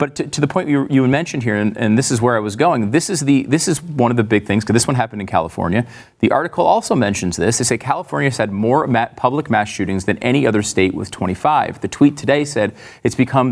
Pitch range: 110-150 Hz